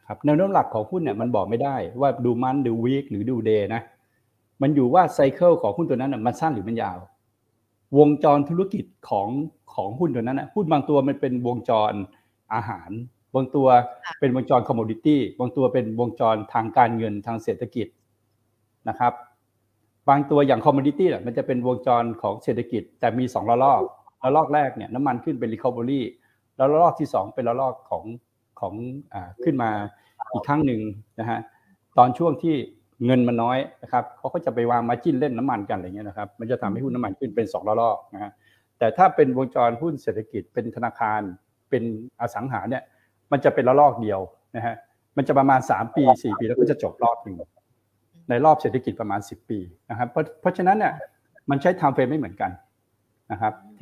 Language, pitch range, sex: Thai, 115-145 Hz, male